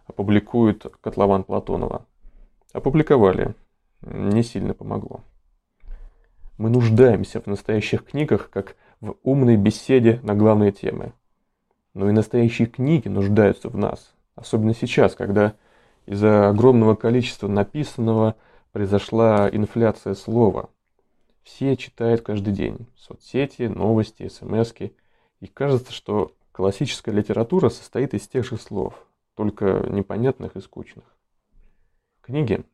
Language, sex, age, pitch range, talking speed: Russian, male, 20-39, 105-120 Hz, 105 wpm